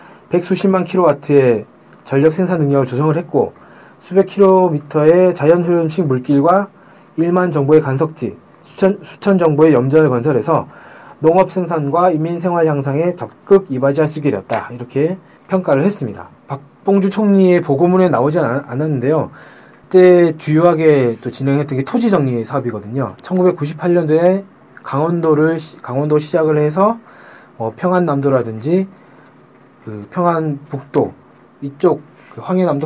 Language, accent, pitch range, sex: Korean, native, 130-175 Hz, male